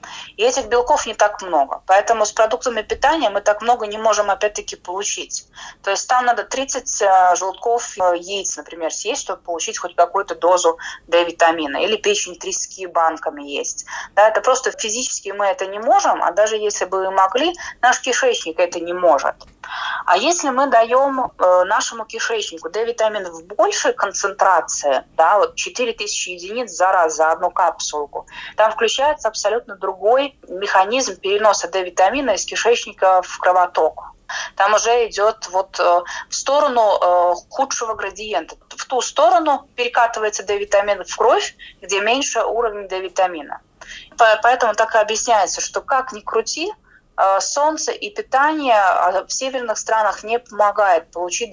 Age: 20-39